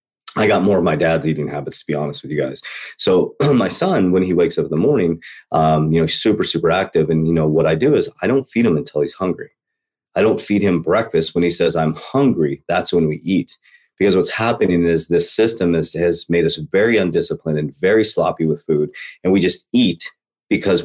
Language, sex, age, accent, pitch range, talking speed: English, male, 30-49, American, 80-115 Hz, 225 wpm